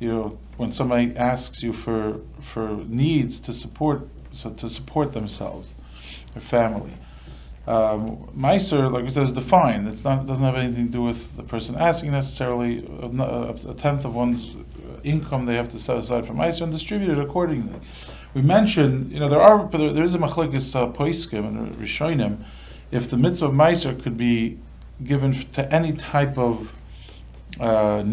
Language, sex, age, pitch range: English, male, 40-59, 110-140 Hz